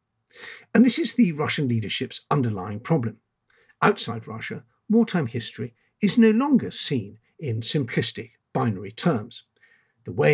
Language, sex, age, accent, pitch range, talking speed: English, male, 50-69, British, 115-150 Hz, 130 wpm